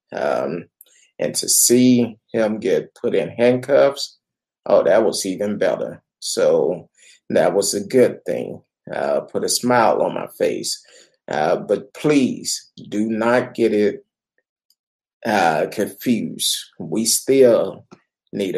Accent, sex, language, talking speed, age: American, male, English, 125 wpm, 30-49